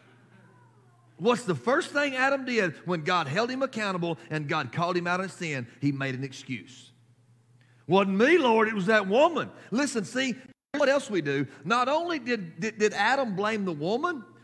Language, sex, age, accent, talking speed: English, male, 40-59, American, 185 wpm